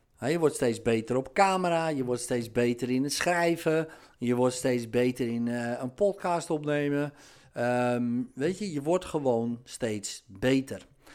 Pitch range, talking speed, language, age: 125-150 Hz, 155 wpm, Dutch, 50-69